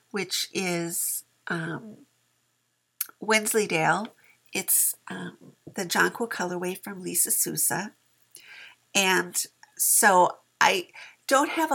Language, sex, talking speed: English, female, 85 wpm